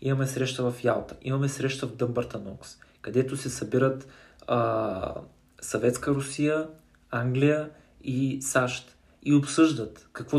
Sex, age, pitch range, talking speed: male, 20-39, 125-150 Hz, 120 wpm